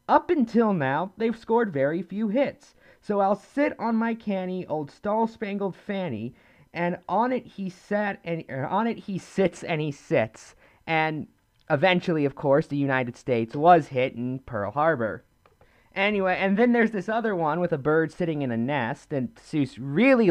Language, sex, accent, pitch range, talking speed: English, male, American, 140-215 Hz, 180 wpm